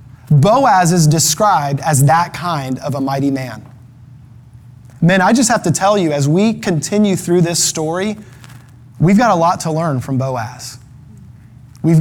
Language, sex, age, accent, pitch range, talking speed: English, male, 20-39, American, 125-165 Hz, 160 wpm